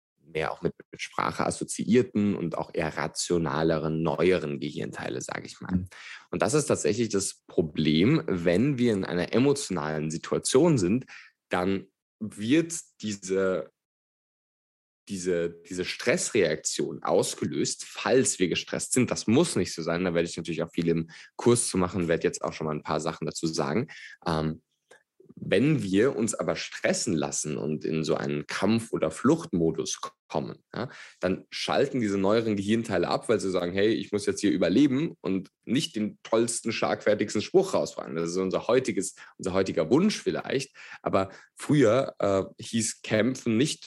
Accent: German